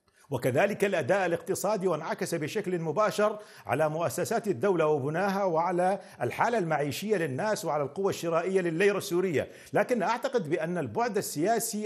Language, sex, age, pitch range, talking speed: Arabic, male, 50-69, 175-215 Hz, 120 wpm